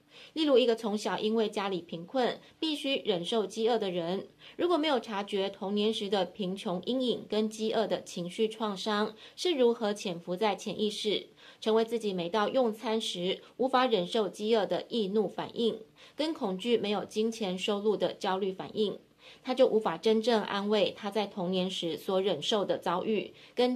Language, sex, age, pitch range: Chinese, female, 20-39, 190-230 Hz